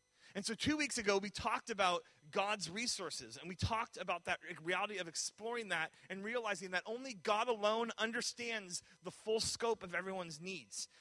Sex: male